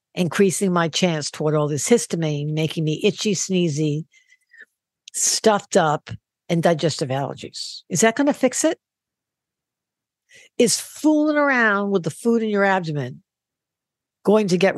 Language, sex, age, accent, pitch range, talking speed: English, female, 60-79, American, 175-260 Hz, 140 wpm